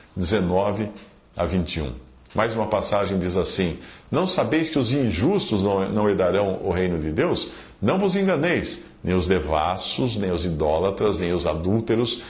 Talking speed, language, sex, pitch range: 150 wpm, English, male, 85-120 Hz